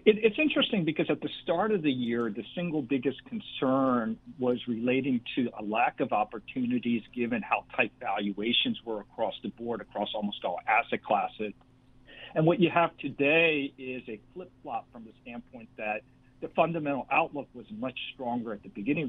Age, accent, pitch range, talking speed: 50-69, American, 115-145 Hz, 170 wpm